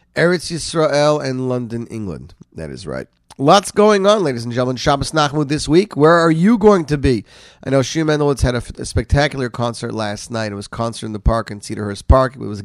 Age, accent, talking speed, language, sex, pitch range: 40-59, American, 225 wpm, English, male, 120-155 Hz